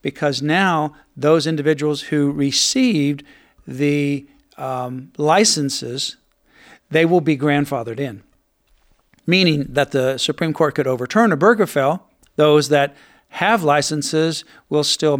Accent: American